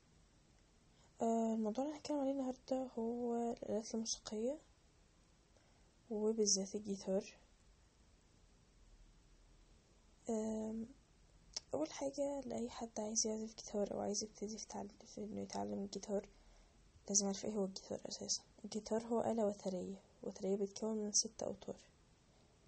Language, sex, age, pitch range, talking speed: English, female, 10-29, 195-230 Hz, 110 wpm